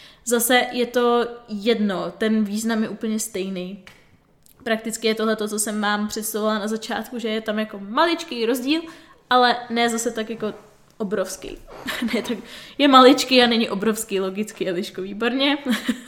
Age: 20-39